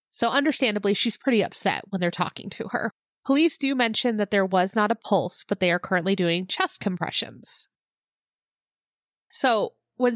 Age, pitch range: 20-39, 190-250 Hz